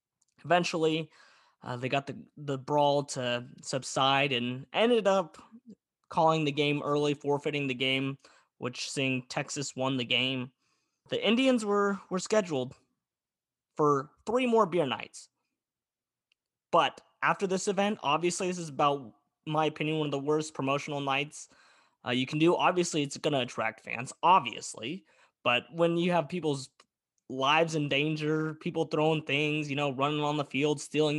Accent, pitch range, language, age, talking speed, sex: American, 135-165 Hz, English, 20-39, 155 wpm, male